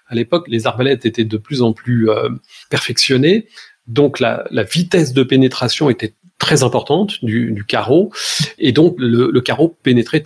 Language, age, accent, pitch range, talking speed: French, 40-59, French, 120-160 Hz, 170 wpm